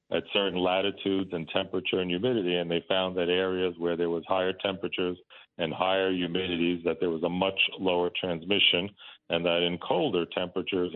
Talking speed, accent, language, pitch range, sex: 175 wpm, American, English, 85-95 Hz, male